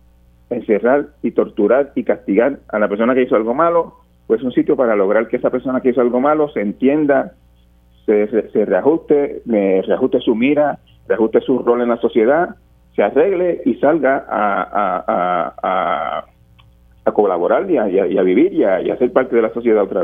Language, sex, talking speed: Spanish, male, 180 wpm